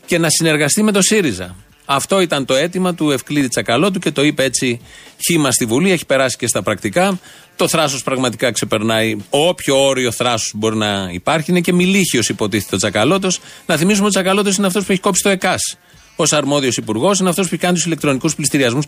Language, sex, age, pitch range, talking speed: Greek, male, 40-59, 135-180 Hz, 200 wpm